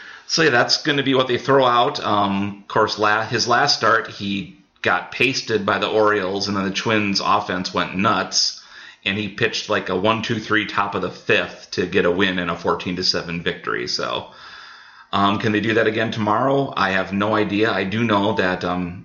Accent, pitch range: American, 90-105 Hz